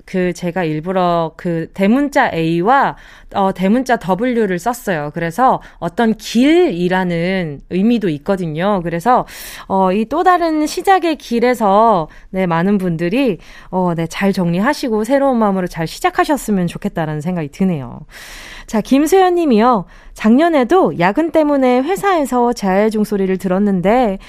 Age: 20-39